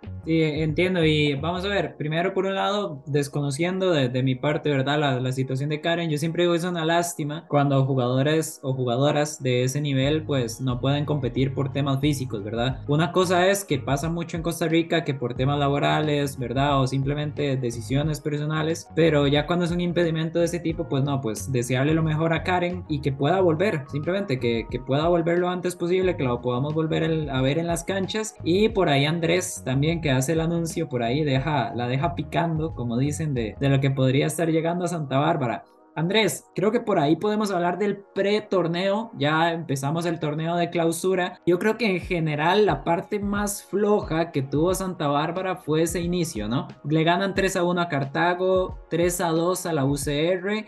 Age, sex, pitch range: 20-39, male, 140-175 Hz